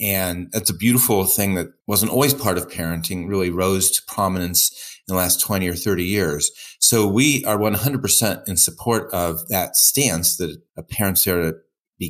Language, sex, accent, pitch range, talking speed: English, male, American, 90-115 Hz, 185 wpm